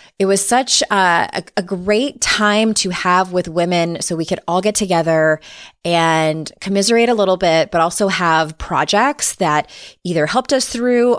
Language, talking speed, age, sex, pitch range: English, 165 wpm, 20-39, female, 165-210 Hz